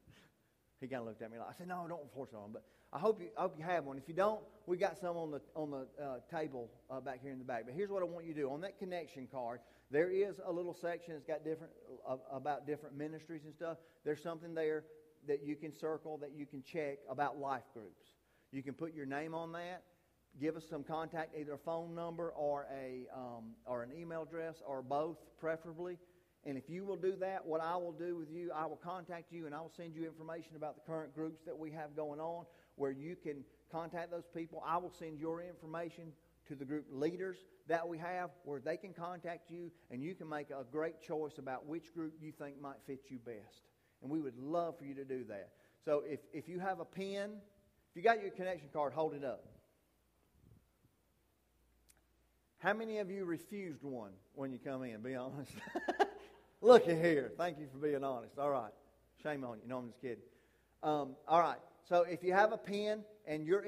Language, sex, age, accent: English, male, 40-59, American